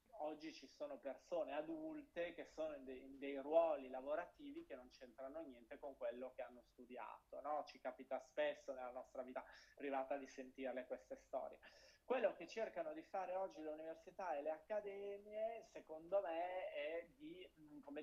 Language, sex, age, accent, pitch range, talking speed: Italian, male, 30-49, native, 140-225 Hz, 165 wpm